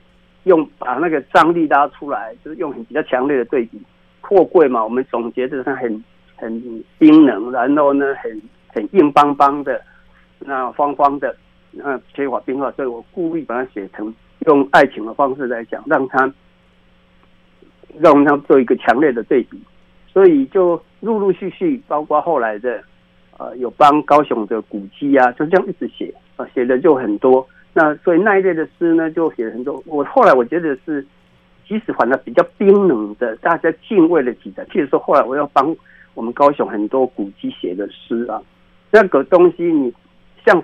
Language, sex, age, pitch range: Chinese, male, 60-79, 120-180 Hz